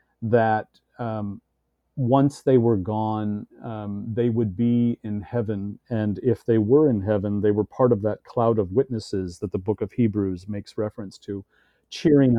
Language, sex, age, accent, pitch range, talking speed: English, male, 40-59, American, 100-125 Hz, 170 wpm